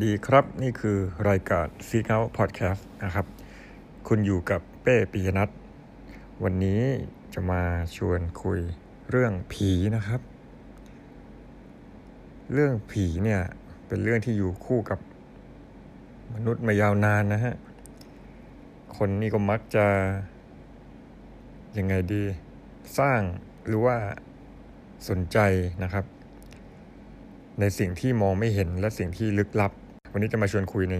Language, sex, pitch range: Thai, male, 95-110 Hz